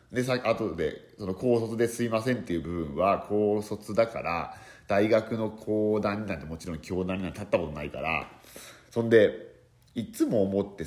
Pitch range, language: 85-120 Hz, Japanese